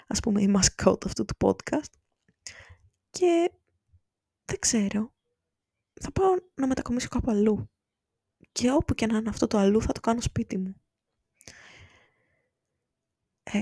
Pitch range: 190-235 Hz